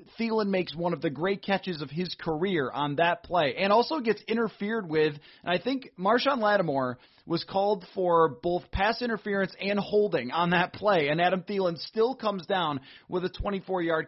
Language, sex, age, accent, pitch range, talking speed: English, male, 30-49, American, 170-220 Hz, 185 wpm